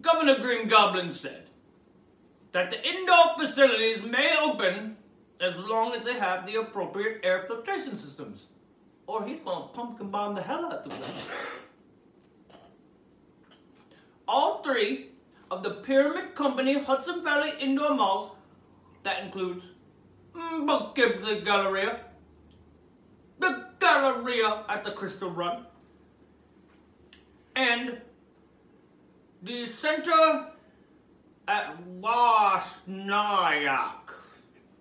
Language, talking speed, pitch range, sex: English, 95 wpm, 210-305 Hz, male